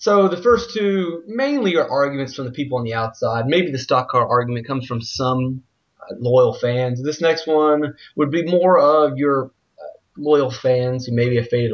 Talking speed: 190 wpm